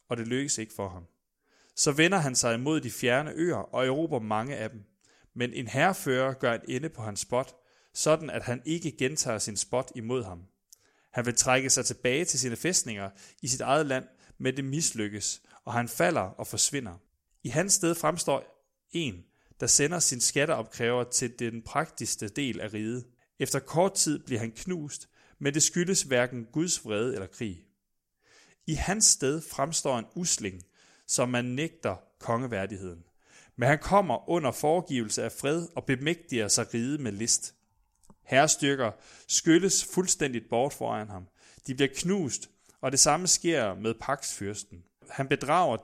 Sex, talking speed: male, 165 wpm